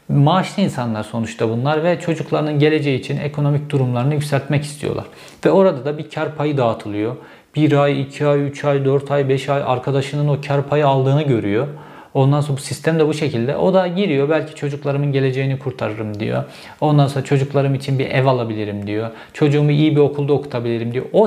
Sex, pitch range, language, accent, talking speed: male, 125-155 Hz, Turkish, native, 185 wpm